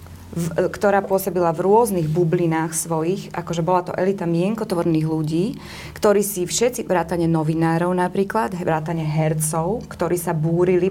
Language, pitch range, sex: Slovak, 170-205 Hz, female